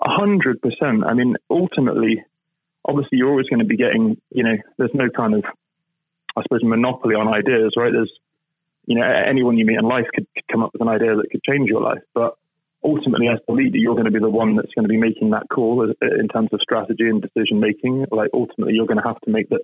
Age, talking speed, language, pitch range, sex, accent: 20-39, 240 wpm, English, 115-160 Hz, male, British